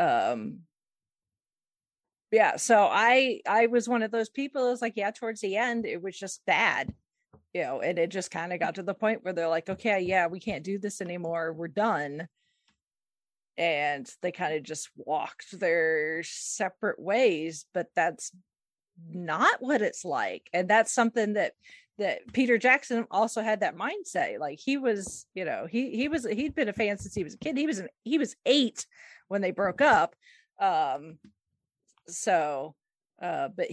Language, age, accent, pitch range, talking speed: English, 40-59, American, 180-245 Hz, 180 wpm